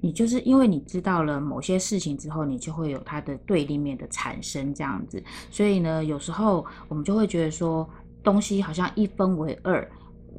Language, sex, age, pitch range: Chinese, female, 20-39, 145-190 Hz